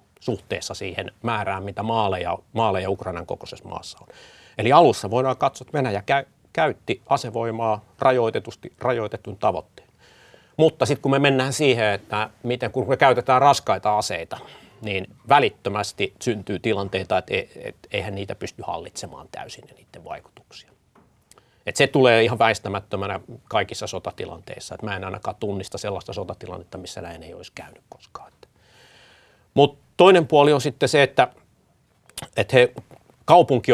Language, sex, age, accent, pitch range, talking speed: Finnish, male, 30-49, native, 100-130 Hz, 130 wpm